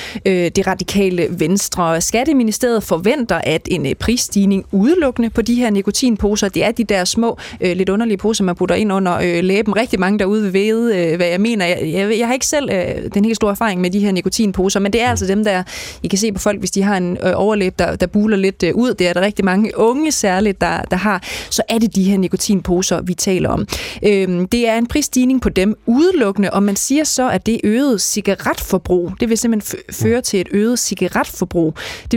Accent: native